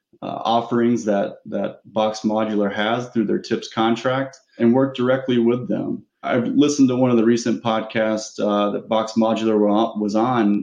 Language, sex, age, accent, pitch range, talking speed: English, male, 20-39, American, 105-115 Hz, 170 wpm